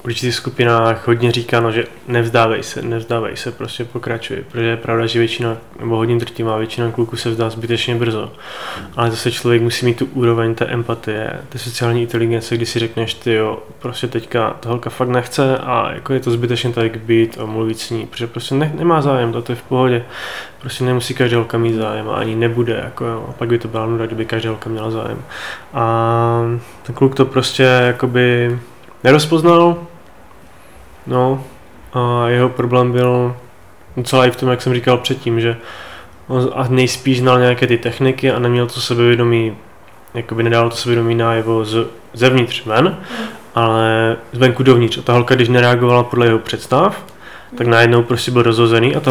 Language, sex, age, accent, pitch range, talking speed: Czech, male, 20-39, native, 115-125 Hz, 180 wpm